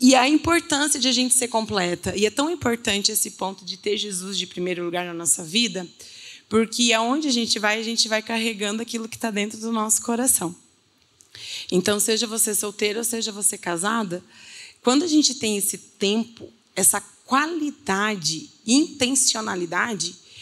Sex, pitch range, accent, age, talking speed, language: female, 205-260 Hz, Brazilian, 20-39, 165 wpm, Portuguese